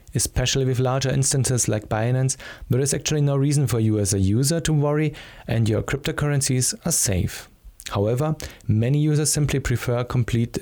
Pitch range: 110-140 Hz